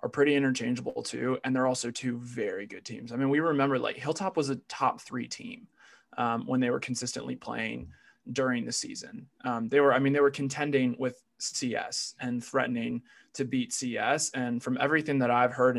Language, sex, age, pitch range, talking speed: English, male, 20-39, 120-135 Hz, 200 wpm